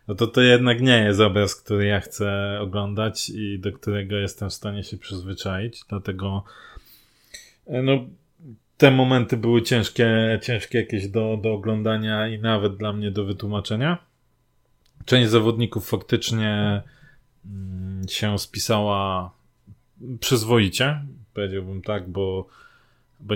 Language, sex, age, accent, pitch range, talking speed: Polish, male, 20-39, native, 100-120 Hz, 120 wpm